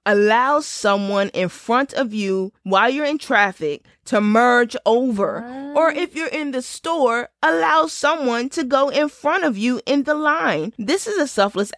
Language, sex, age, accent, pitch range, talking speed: English, female, 20-39, American, 205-285 Hz, 175 wpm